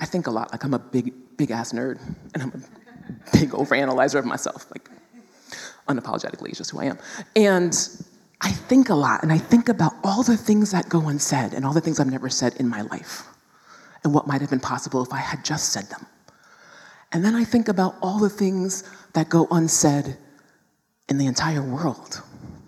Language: English